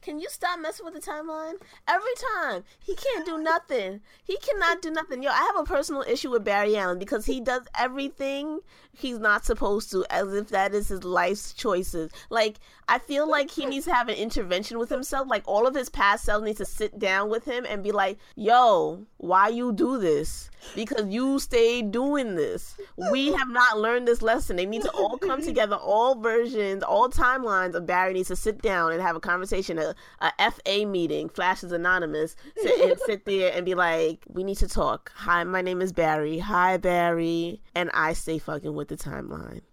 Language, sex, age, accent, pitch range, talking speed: English, female, 20-39, American, 185-295 Hz, 205 wpm